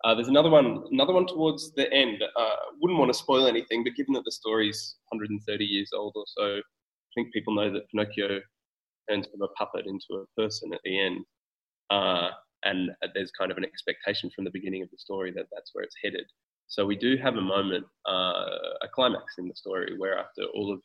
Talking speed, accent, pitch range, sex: 215 wpm, Australian, 95-115 Hz, male